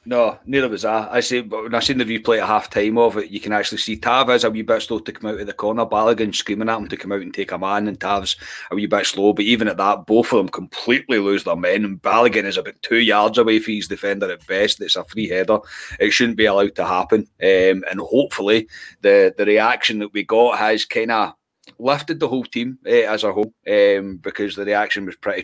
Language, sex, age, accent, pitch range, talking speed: English, male, 30-49, British, 105-125 Hz, 255 wpm